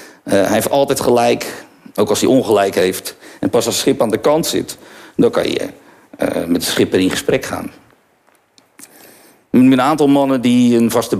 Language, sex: Dutch, male